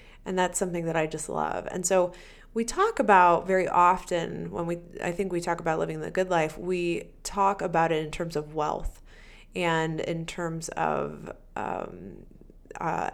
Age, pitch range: 30-49, 160-190 Hz